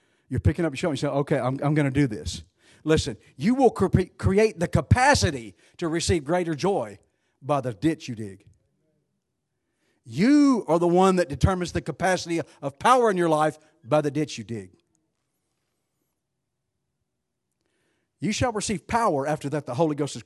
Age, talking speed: 50-69, 170 wpm